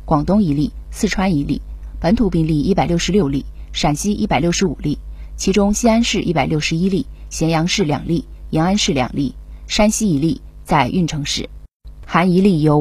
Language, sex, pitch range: Chinese, female, 145-195 Hz